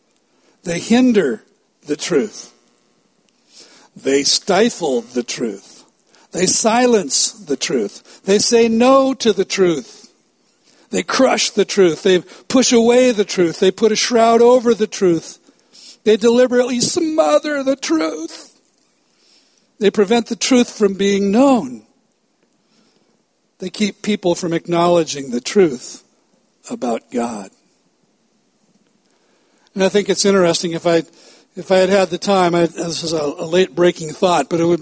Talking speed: 130 wpm